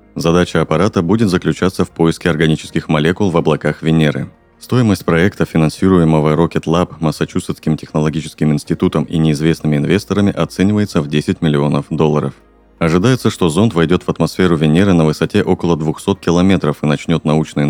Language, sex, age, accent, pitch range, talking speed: Russian, male, 30-49, native, 75-90 Hz, 140 wpm